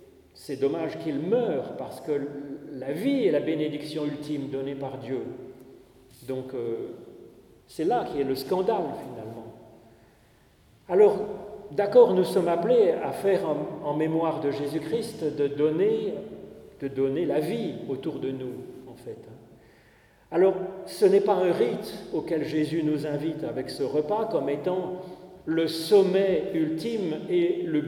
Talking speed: 140 wpm